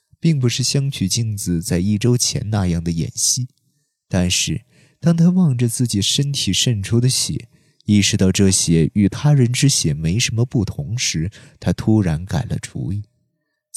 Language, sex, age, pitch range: Chinese, male, 20-39, 100-140 Hz